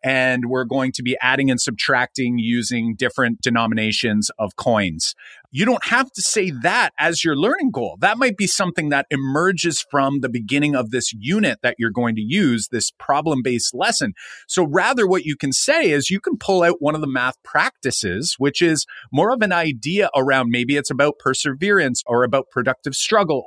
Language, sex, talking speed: English, male, 190 wpm